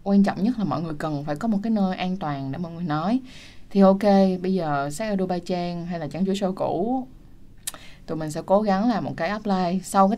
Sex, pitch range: female, 165-205 Hz